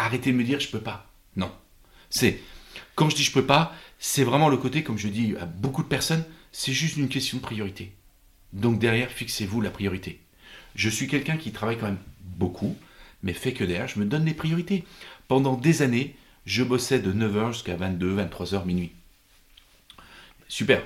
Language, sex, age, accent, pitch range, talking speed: French, male, 40-59, French, 95-140 Hz, 205 wpm